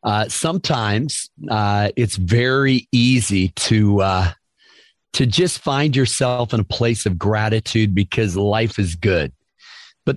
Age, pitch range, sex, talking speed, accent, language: 40-59, 105-135 Hz, male, 130 wpm, American, English